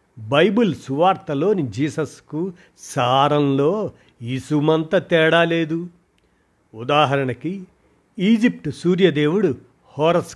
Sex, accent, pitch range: male, native, 125-160 Hz